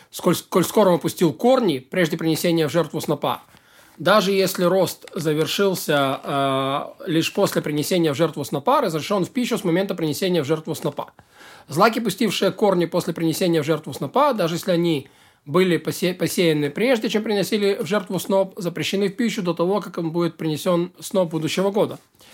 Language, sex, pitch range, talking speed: Russian, male, 160-210 Hz, 170 wpm